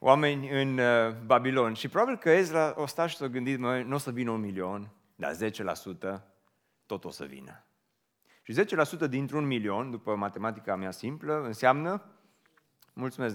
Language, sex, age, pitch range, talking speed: Romanian, male, 30-49, 105-145 Hz, 155 wpm